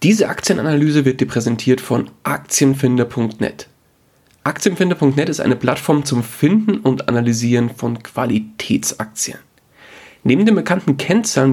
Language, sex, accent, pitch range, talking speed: German, male, German, 125-170 Hz, 110 wpm